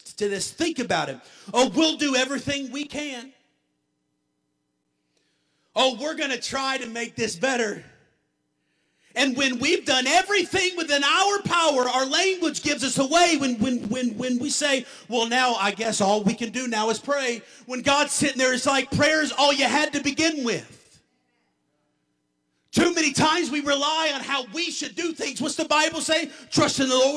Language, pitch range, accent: English, 235-290 Hz, American